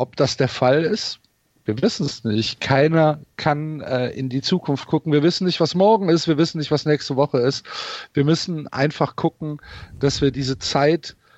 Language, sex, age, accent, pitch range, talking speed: German, male, 40-59, German, 125-150 Hz, 195 wpm